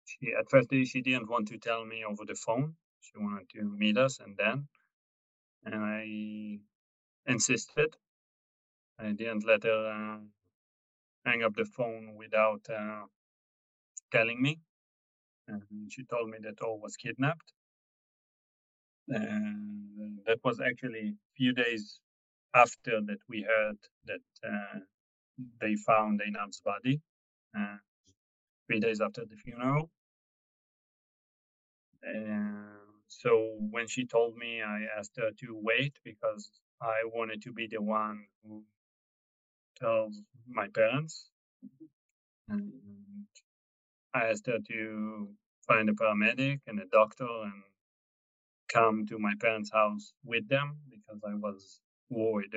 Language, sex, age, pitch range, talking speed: English, male, 30-49, 105-125 Hz, 125 wpm